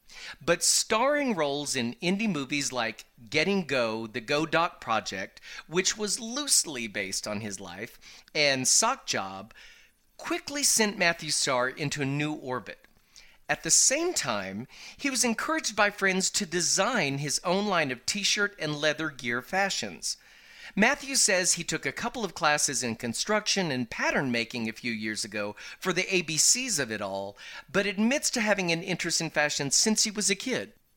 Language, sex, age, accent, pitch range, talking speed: English, male, 40-59, American, 130-215 Hz, 170 wpm